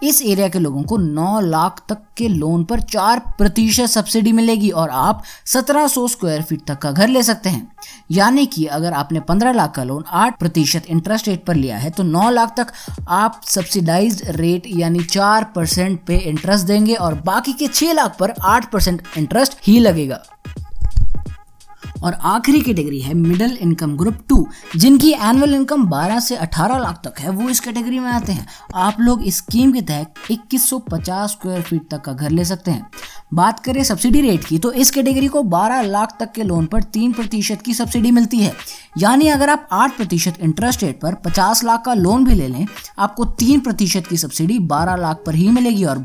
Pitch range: 170-240 Hz